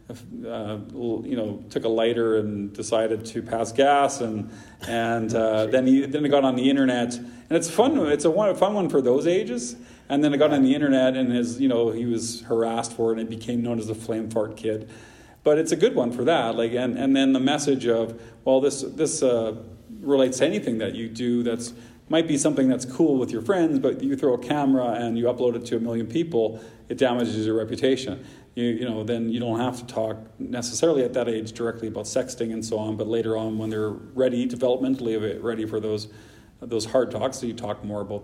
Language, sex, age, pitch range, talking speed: English, male, 40-59, 110-130 Hz, 235 wpm